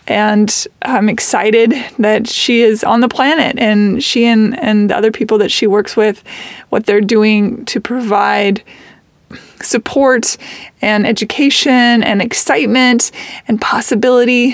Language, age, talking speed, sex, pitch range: English, 20-39, 130 wpm, female, 210-255 Hz